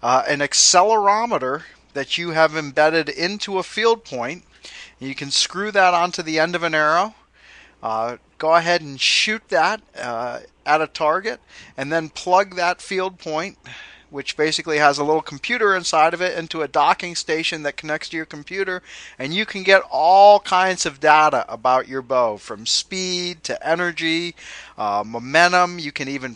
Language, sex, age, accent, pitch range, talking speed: English, male, 40-59, American, 130-170 Hz, 170 wpm